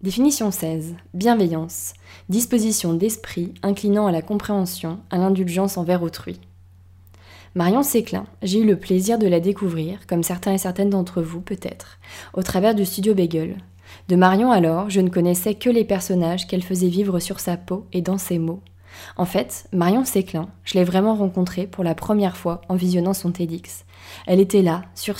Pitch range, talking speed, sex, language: 165-195 Hz, 175 wpm, female, French